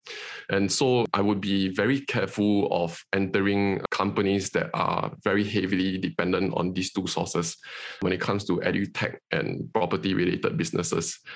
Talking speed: 145 wpm